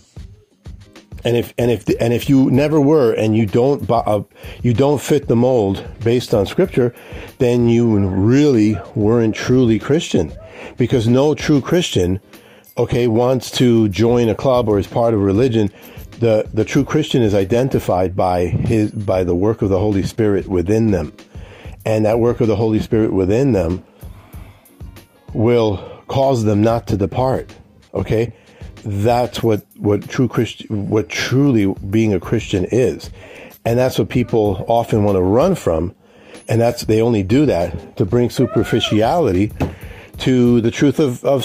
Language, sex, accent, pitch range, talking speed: English, male, American, 105-125 Hz, 160 wpm